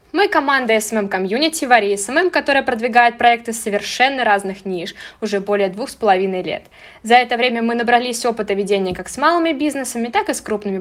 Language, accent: Russian, native